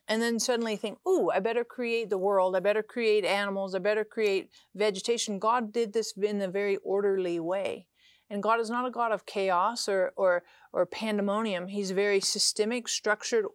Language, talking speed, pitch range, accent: English, 185 wpm, 200-250 Hz, American